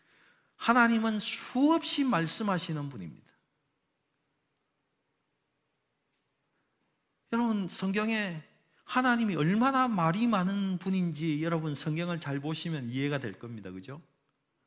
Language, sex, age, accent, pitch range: Korean, male, 40-59, native, 135-210 Hz